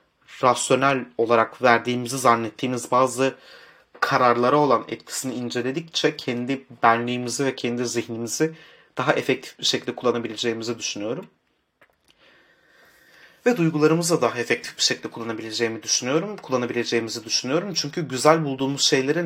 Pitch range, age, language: 115-140 Hz, 30-49, Turkish